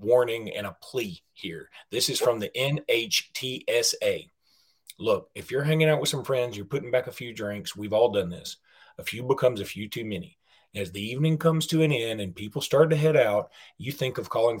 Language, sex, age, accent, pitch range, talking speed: English, male, 30-49, American, 110-165 Hz, 215 wpm